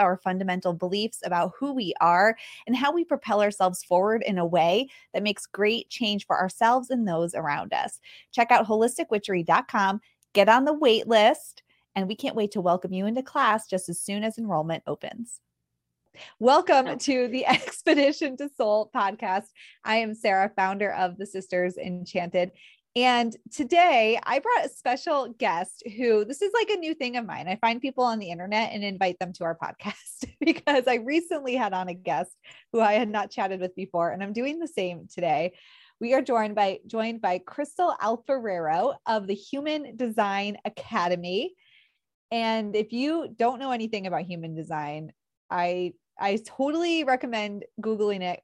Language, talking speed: English, 175 wpm